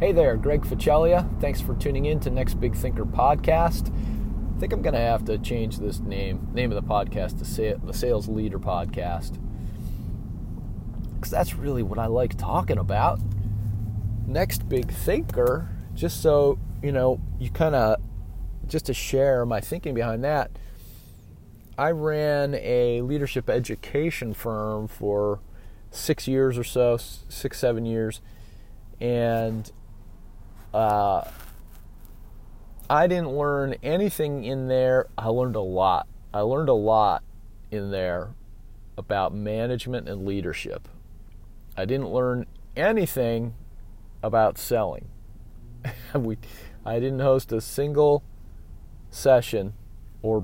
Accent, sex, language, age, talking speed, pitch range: American, male, English, 30-49, 125 wpm, 95-125 Hz